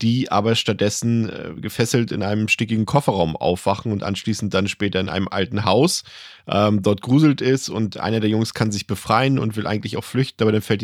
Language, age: German, 10-29